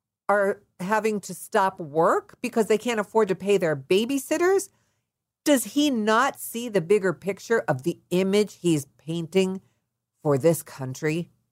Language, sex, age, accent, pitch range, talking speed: English, female, 50-69, American, 135-200 Hz, 145 wpm